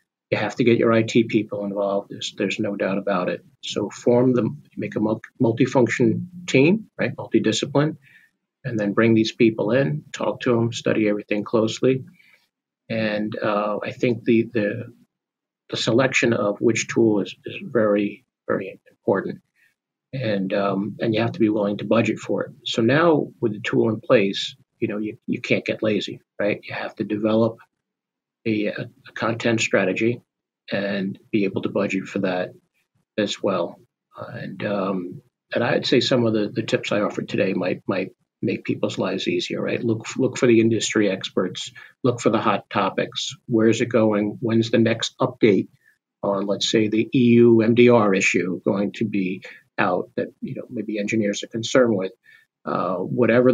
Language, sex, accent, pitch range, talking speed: English, male, American, 105-120 Hz, 175 wpm